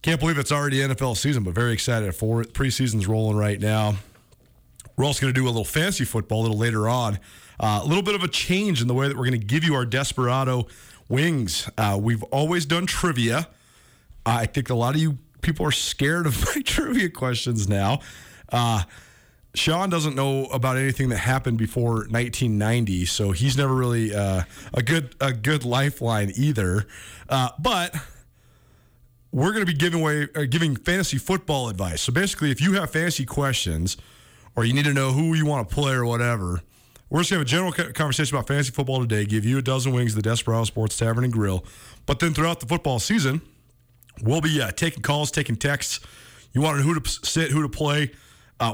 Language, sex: English, male